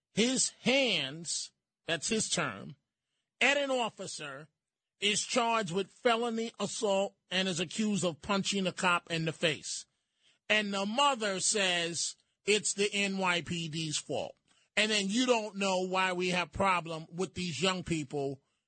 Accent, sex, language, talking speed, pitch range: American, male, English, 140 wpm, 170-220 Hz